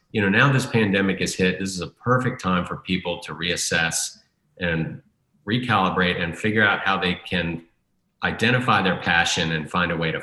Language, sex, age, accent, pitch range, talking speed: English, male, 40-59, American, 90-110 Hz, 190 wpm